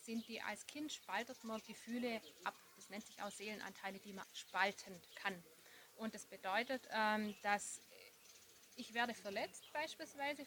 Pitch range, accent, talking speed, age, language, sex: 210-250 Hz, German, 145 wpm, 30-49, German, female